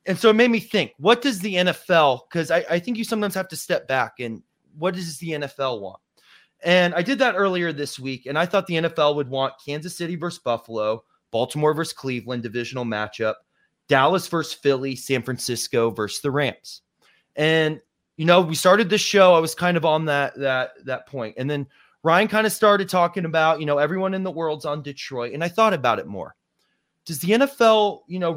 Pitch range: 140-190 Hz